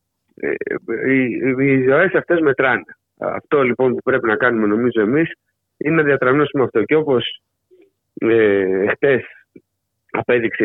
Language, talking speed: Greek, 125 wpm